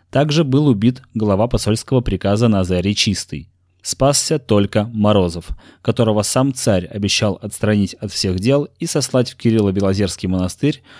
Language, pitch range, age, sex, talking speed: Russian, 95-125 Hz, 20-39, male, 130 wpm